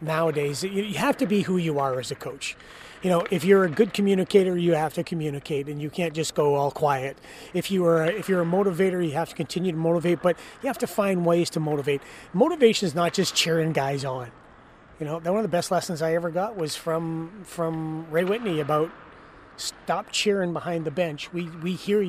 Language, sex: English, male